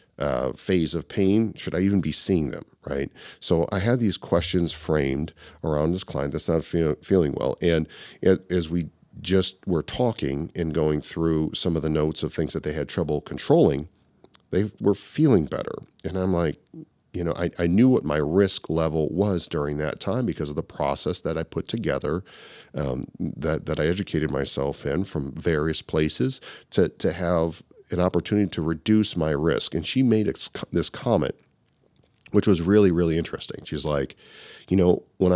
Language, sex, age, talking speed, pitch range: English, male, 40-59, 185 wpm, 75-95 Hz